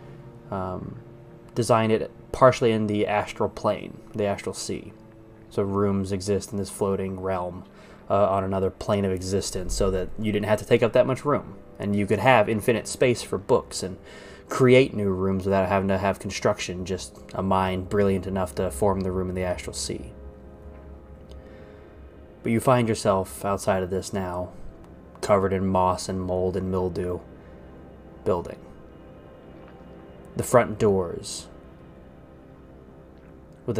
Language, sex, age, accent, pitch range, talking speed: English, male, 20-39, American, 80-100 Hz, 150 wpm